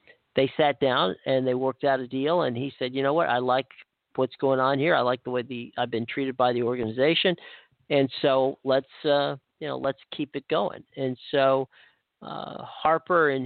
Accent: American